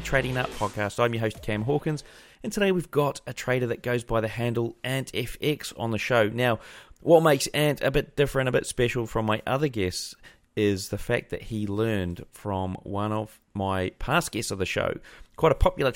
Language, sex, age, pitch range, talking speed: English, male, 30-49, 110-140 Hz, 210 wpm